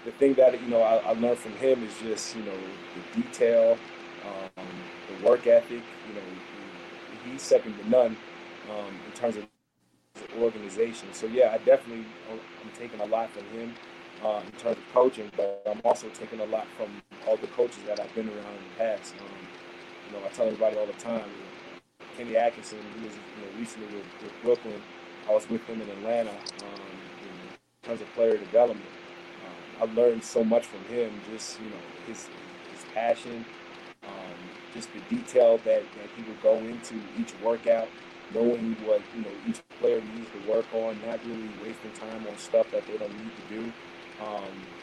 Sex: male